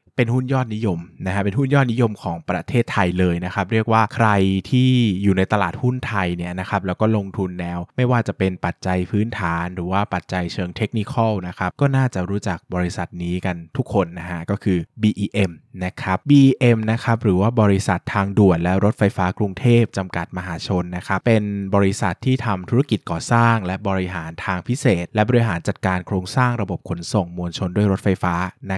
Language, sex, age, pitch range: Thai, male, 20-39, 90-115 Hz